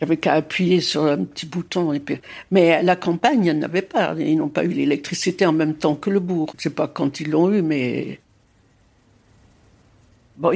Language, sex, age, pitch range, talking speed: French, female, 60-79, 155-205 Hz, 215 wpm